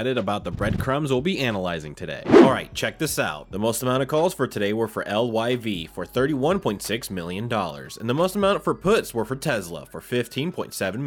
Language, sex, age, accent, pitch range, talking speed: English, male, 20-39, American, 105-140 Hz, 200 wpm